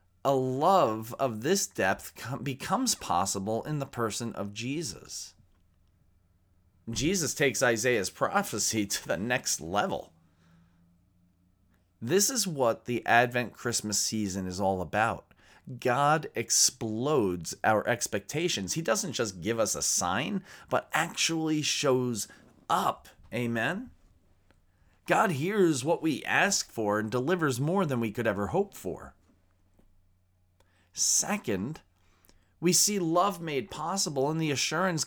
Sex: male